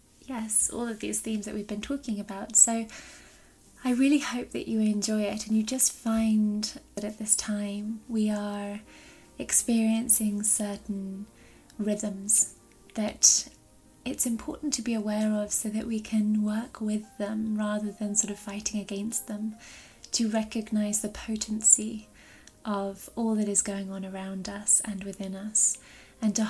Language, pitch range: English, 205-225 Hz